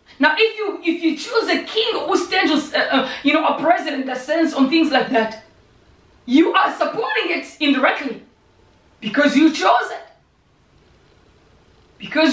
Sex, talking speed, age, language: female, 155 wpm, 30-49, English